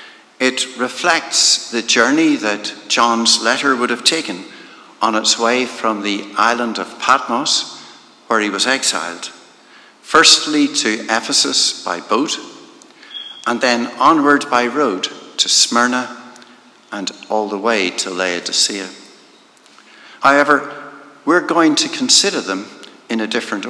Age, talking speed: 60-79, 125 wpm